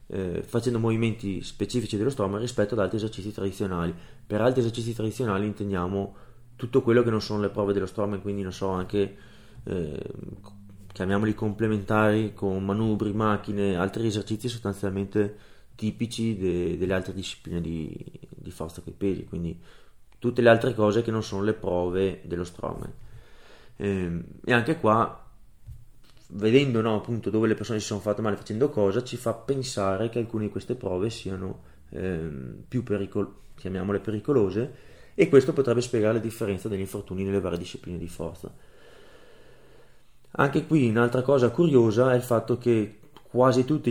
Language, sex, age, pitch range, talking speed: Italian, male, 20-39, 100-120 Hz, 150 wpm